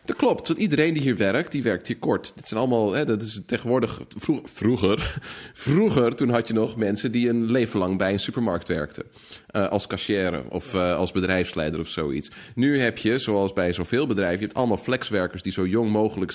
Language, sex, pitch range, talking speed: Dutch, male, 100-120 Hz, 205 wpm